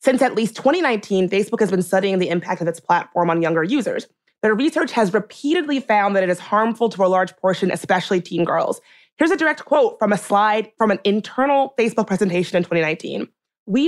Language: English